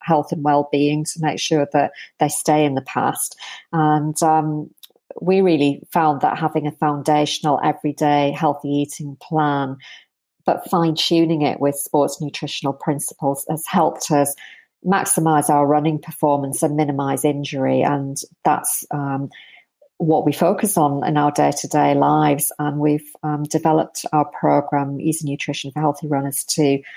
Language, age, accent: English, 50-69, British